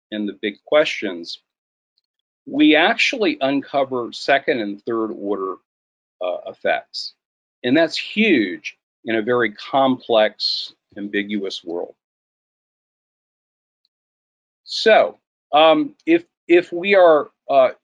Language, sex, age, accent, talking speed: English, male, 50-69, American, 100 wpm